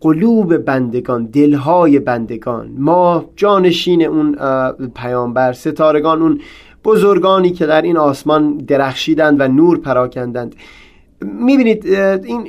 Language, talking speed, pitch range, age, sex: Persian, 100 wpm, 135-180 Hz, 30-49, male